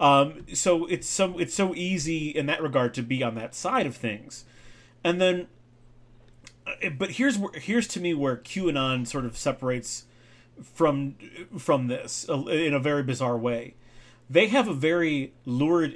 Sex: male